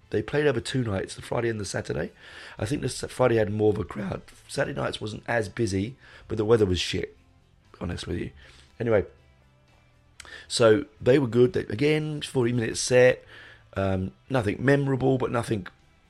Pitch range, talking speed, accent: 95-120 Hz, 175 wpm, British